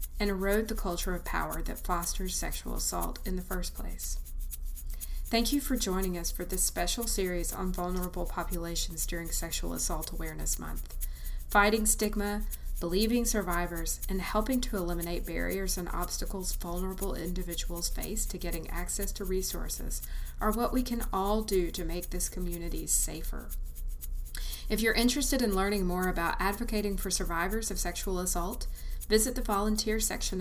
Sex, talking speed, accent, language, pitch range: female, 155 wpm, American, English, 170-205 Hz